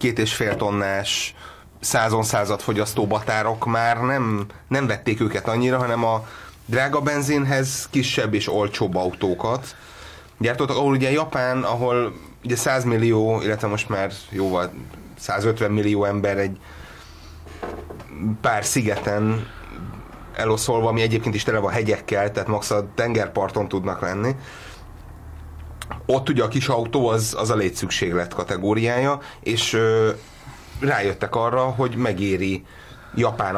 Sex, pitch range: male, 100-120 Hz